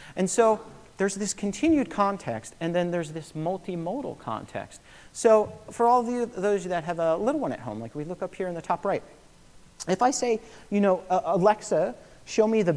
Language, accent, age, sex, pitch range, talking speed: English, American, 40-59, male, 145-200 Hz, 205 wpm